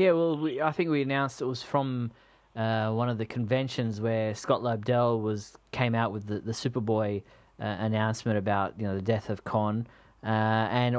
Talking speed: 195 wpm